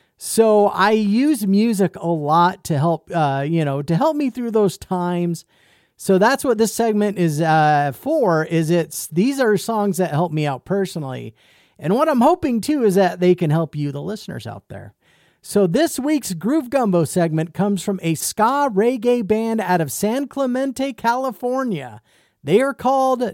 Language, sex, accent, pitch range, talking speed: English, male, American, 155-230 Hz, 180 wpm